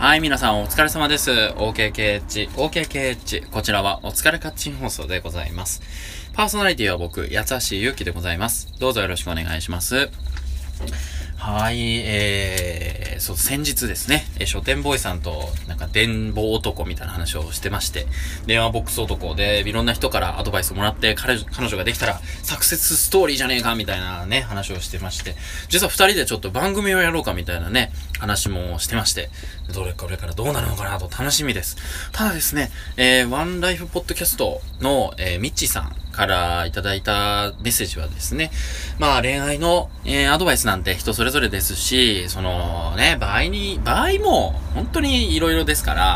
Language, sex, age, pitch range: Japanese, male, 20-39, 85-135 Hz